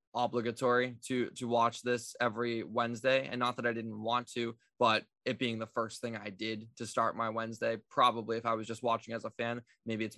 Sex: male